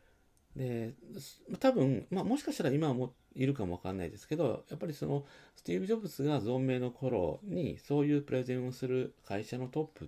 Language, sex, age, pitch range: Japanese, male, 40-59, 90-140 Hz